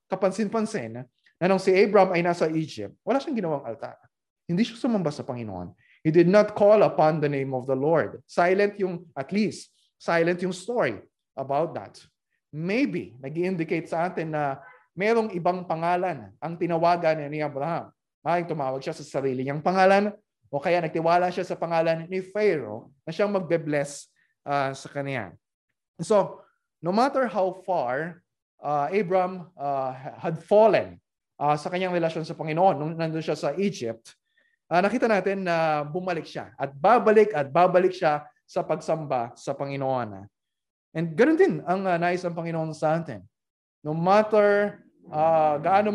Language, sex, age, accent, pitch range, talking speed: Filipino, male, 20-39, native, 150-190 Hz, 155 wpm